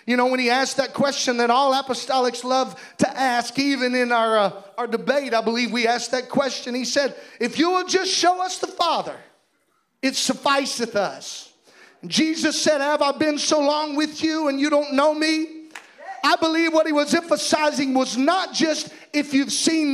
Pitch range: 260-315 Hz